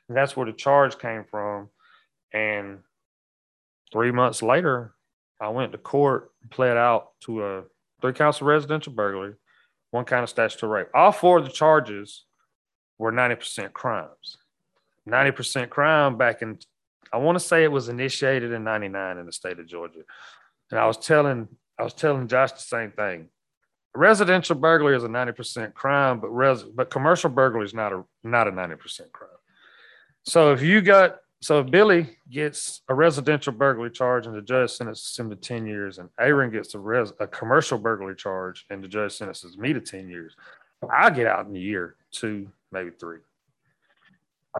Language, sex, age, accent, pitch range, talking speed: English, male, 30-49, American, 105-140 Hz, 175 wpm